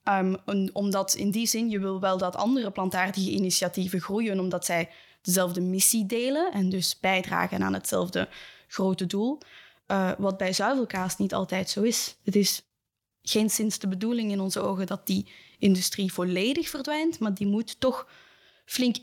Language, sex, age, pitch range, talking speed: Dutch, female, 10-29, 190-225 Hz, 165 wpm